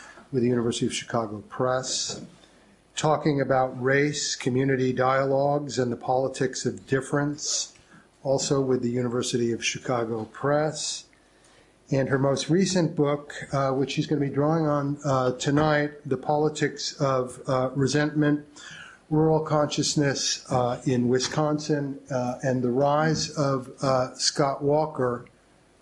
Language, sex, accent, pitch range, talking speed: English, male, American, 130-155 Hz, 130 wpm